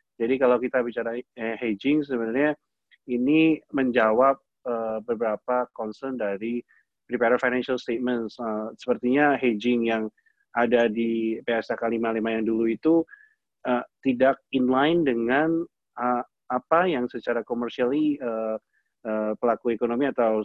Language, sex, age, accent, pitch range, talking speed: Indonesian, male, 30-49, native, 115-140 Hz, 120 wpm